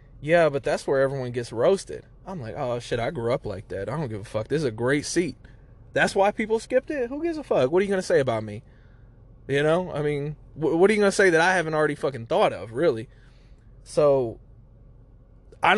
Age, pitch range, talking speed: 20-39, 120-160 Hz, 240 wpm